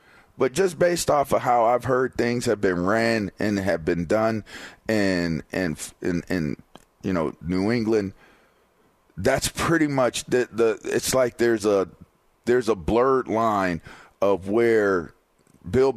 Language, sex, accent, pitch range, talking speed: English, male, American, 100-135 Hz, 145 wpm